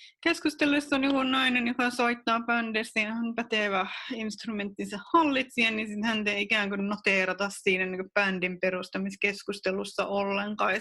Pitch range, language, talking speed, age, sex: 190-235 Hz, Finnish, 130 wpm, 30-49, female